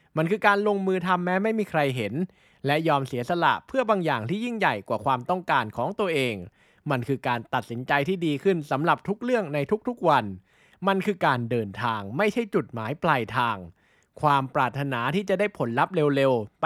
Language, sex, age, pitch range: Thai, male, 20-39, 125-185 Hz